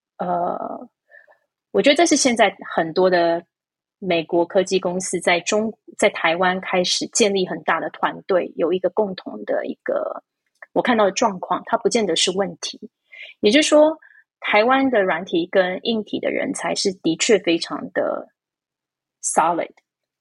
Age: 20-39